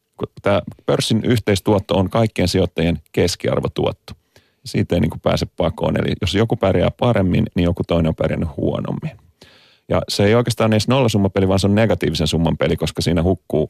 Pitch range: 90-110 Hz